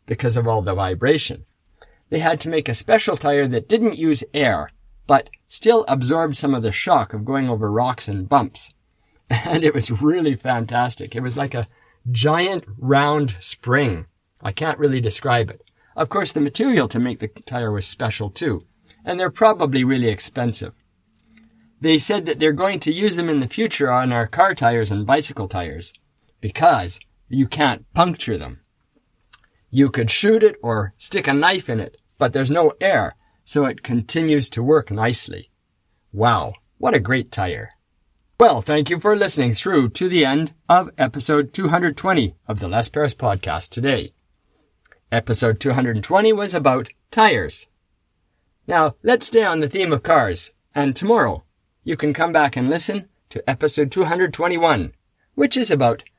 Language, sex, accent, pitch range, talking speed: English, male, American, 110-155 Hz, 165 wpm